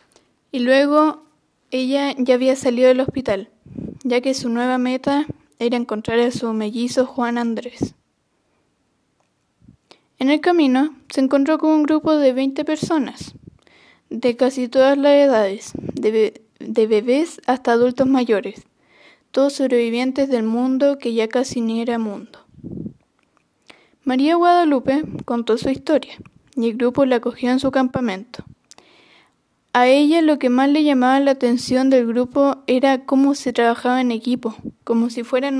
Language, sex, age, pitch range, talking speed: Spanish, female, 10-29, 235-275 Hz, 145 wpm